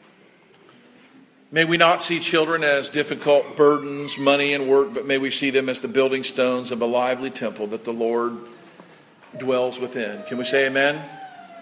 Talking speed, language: 170 wpm, English